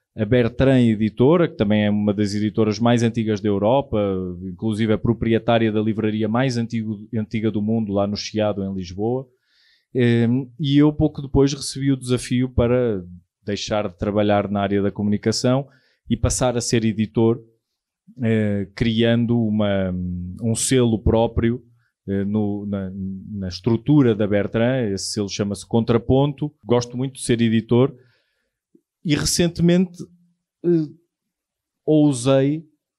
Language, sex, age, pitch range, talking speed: Portuguese, male, 20-39, 105-130 Hz, 120 wpm